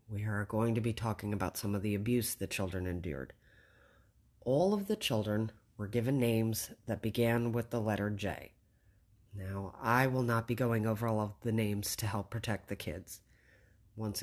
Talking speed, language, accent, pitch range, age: 185 wpm, English, American, 105-115 Hz, 30-49